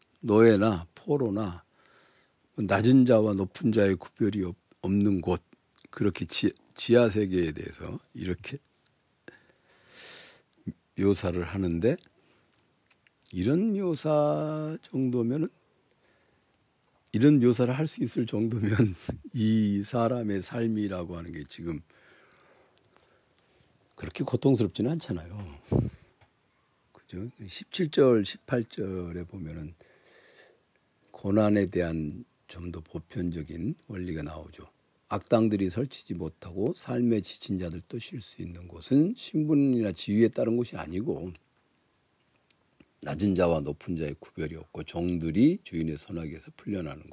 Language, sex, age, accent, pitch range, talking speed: English, male, 60-79, Korean, 90-120 Hz, 85 wpm